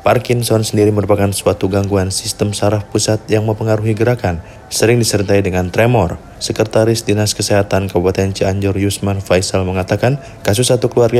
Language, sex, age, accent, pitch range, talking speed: Indonesian, male, 20-39, native, 100-115 Hz, 140 wpm